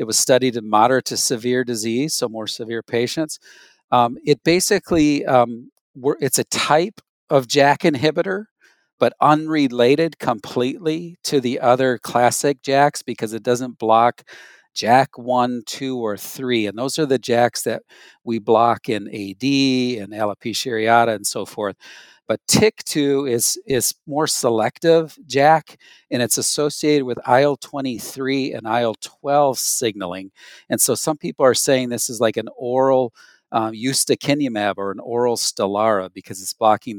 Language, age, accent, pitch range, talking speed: English, 50-69, American, 115-140 Hz, 150 wpm